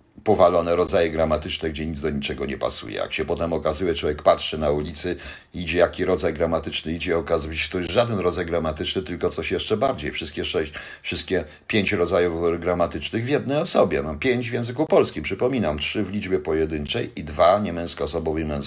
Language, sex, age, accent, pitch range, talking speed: Polish, male, 50-69, native, 85-105 Hz, 180 wpm